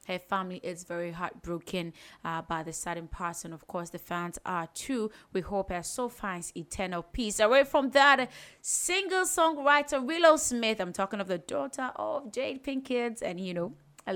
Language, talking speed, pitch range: English, 180 wpm, 180-235 Hz